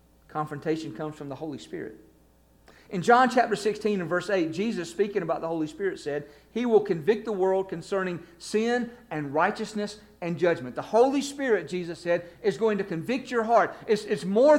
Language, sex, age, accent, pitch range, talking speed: English, male, 50-69, American, 170-225 Hz, 185 wpm